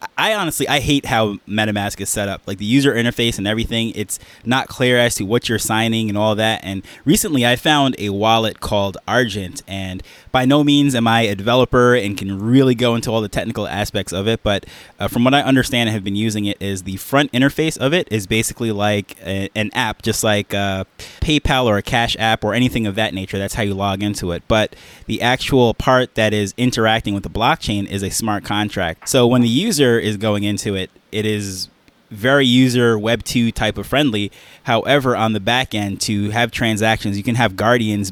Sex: male